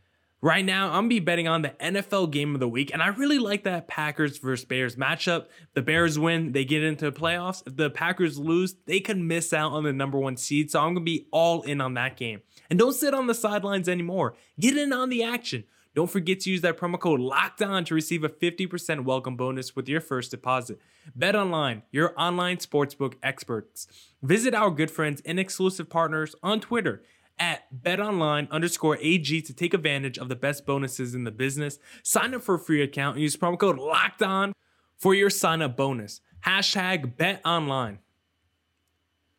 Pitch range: 135-185 Hz